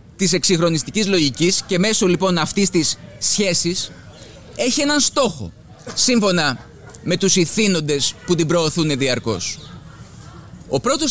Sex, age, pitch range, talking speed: male, 20-39, 165-215 Hz, 120 wpm